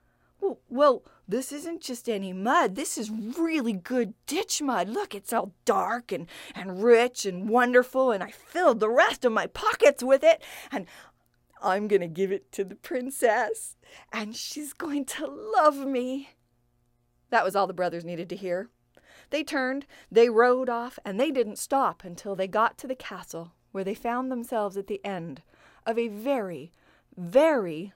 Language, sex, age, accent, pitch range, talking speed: English, female, 40-59, American, 185-260 Hz, 170 wpm